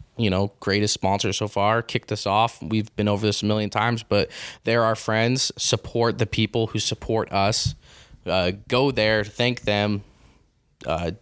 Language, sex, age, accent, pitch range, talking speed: English, male, 20-39, American, 105-115 Hz, 170 wpm